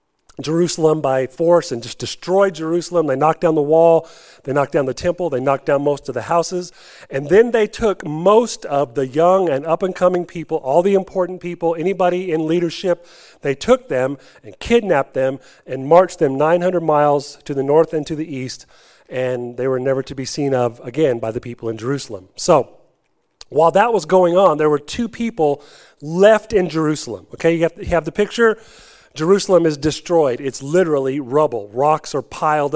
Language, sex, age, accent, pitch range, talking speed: English, male, 40-59, American, 135-175 Hz, 190 wpm